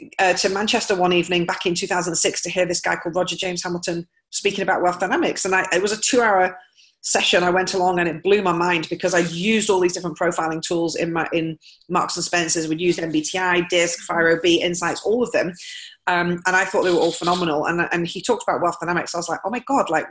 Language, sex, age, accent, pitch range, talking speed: English, female, 30-49, British, 165-190 Hz, 240 wpm